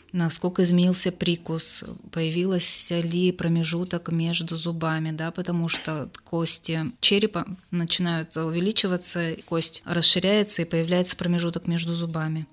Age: 20-39